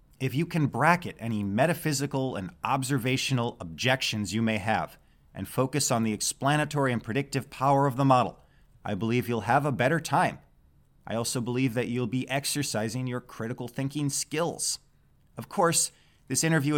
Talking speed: 160 wpm